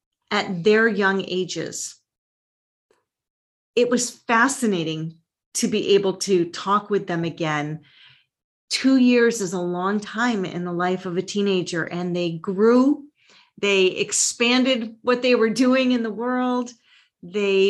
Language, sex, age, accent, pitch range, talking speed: English, female, 40-59, American, 185-235 Hz, 135 wpm